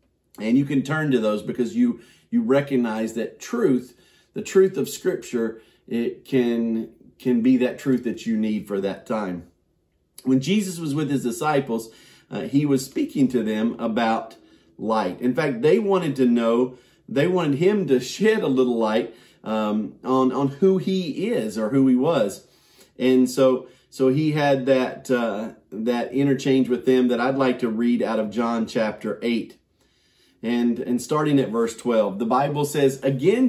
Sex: male